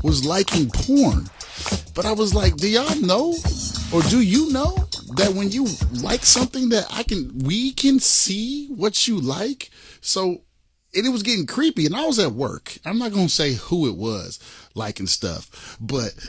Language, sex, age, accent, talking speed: English, male, 30-49, American, 180 wpm